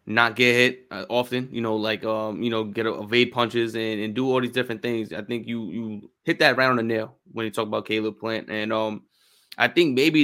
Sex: male